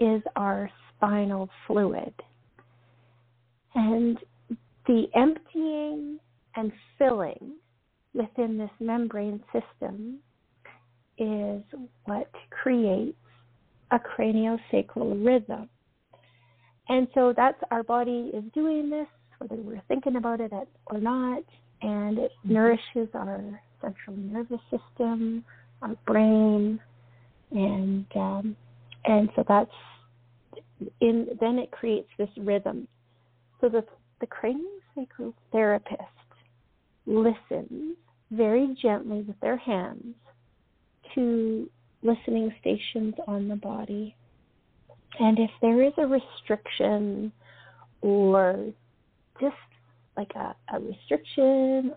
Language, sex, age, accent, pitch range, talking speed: English, female, 40-59, American, 185-240 Hz, 95 wpm